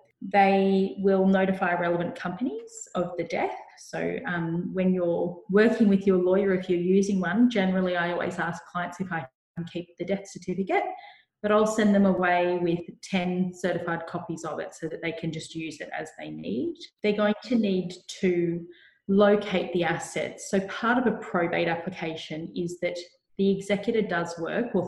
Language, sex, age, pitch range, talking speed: English, female, 30-49, 165-195 Hz, 180 wpm